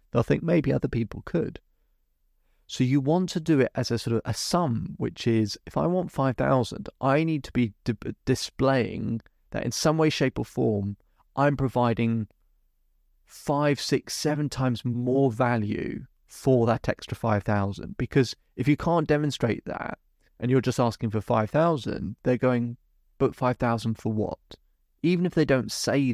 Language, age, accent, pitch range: English, 30-49, British, 100-125 Hz